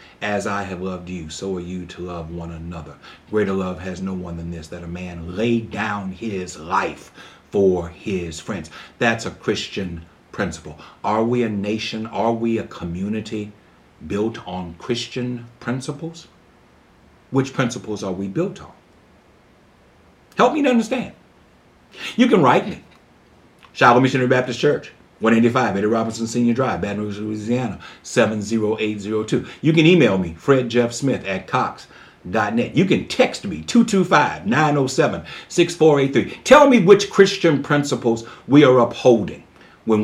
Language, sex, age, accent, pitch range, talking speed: English, male, 60-79, American, 95-130 Hz, 145 wpm